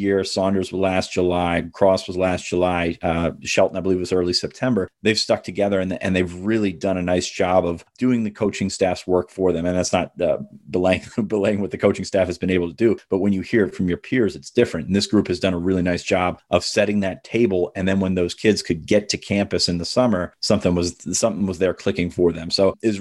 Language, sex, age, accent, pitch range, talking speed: English, male, 30-49, American, 90-100 Hz, 255 wpm